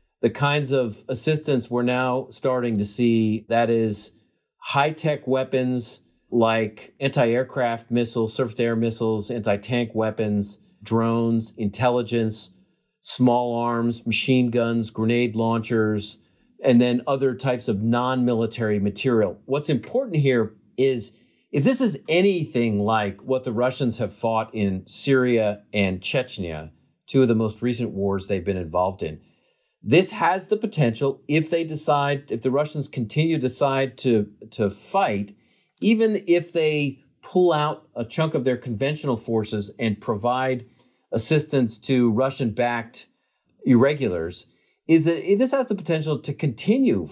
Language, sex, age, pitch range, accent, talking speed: English, male, 40-59, 115-145 Hz, American, 135 wpm